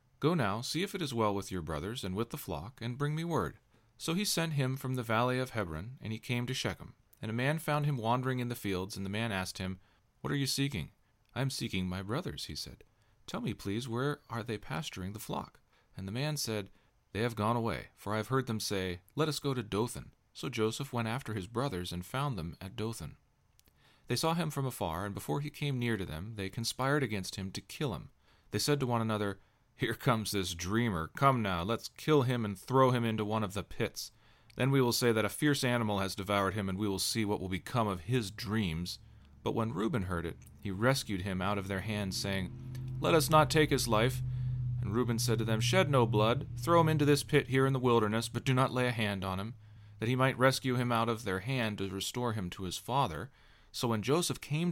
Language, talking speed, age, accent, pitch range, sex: English, 240 wpm, 40-59, American, 100-130 Hz, male